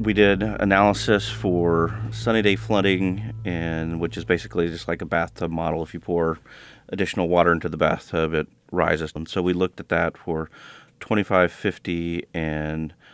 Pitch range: 80-90 Hz